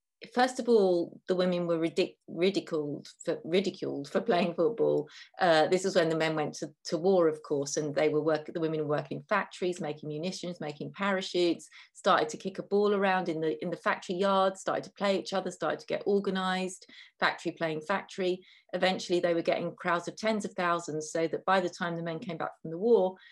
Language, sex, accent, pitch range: English, female, British, 165-200 Hz